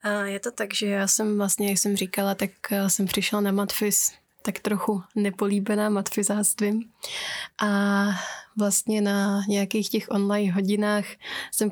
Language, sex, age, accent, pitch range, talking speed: Czech, female, 20-39, native, 200-210 Hz, 140 wpm